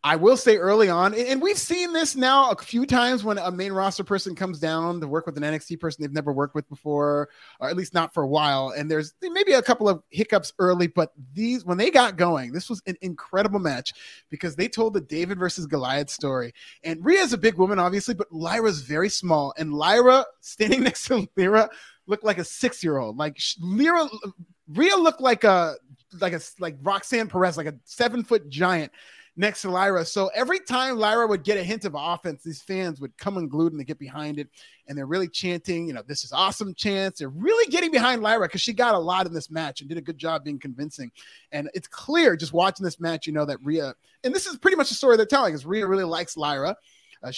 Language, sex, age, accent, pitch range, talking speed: English, male, 30-49, American, 155-215 Hz, 230 wpm